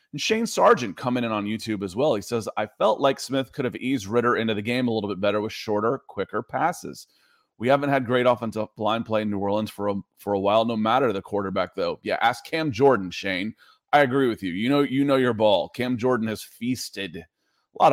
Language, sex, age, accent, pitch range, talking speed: English, male, 30-49, American, 100-125 Hz, 230 wpm